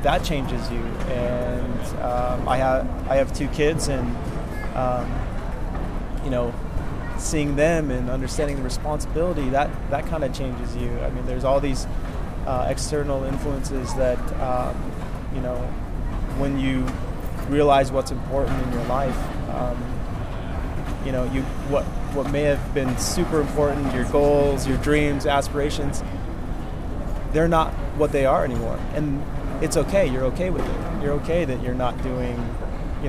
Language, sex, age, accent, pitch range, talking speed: English, male, 20-39, American, 120-140 Hz, 150 wpm